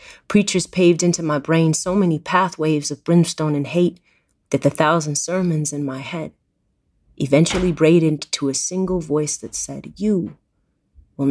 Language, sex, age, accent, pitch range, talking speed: English, female, 30-49, American, 145-180 Hz, 155 wpm